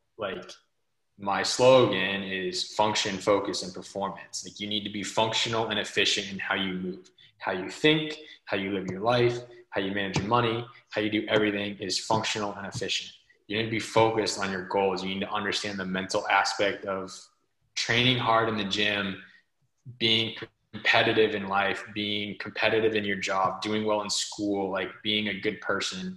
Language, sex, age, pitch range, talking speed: English, male, 20-39, 95-110 Hz, 185 wpm